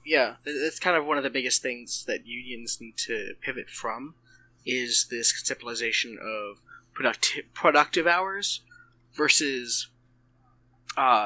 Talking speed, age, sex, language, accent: 130 wpm, 20-39, male, English, American